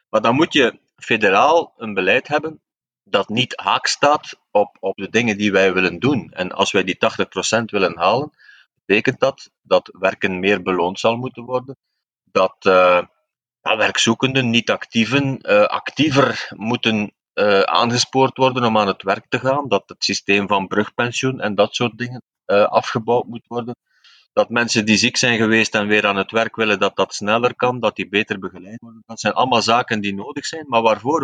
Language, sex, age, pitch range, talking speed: Dutch, male, 40-59, 100-120 Hz, 185 wpm